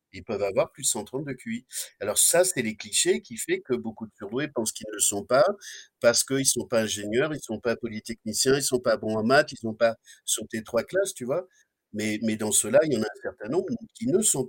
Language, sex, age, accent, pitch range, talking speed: French, male, 50-69, French, 115-150 Hz, 280 wpm